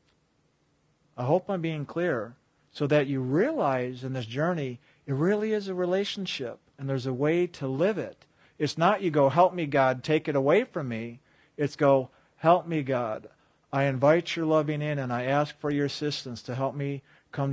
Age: 50-69